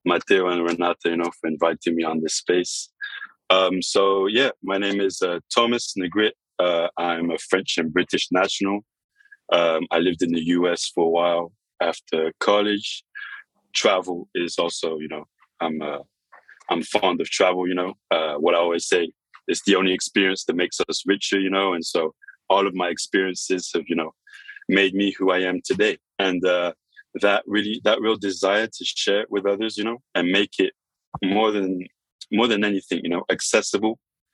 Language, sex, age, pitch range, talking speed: English, male, 20-39, 85-105 Hz, 185 wpm